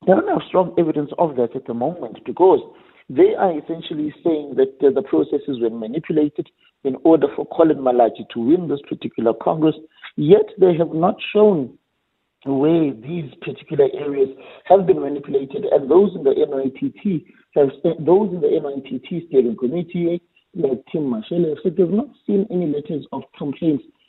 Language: English